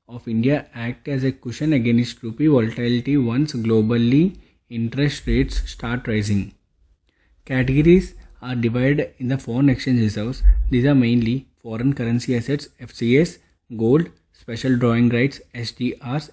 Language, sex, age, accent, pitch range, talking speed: English, male, 20-39, Indian, 115-140 Hz, 130 wpm